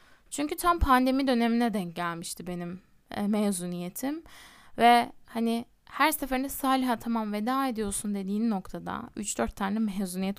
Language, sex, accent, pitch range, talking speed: Turkish, female, native, 200-270 Hz, 125 wpm